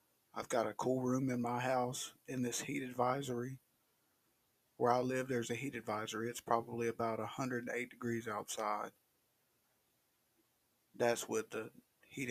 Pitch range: 110-130 Hz